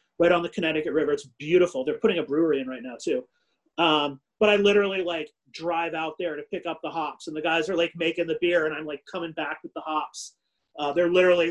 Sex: male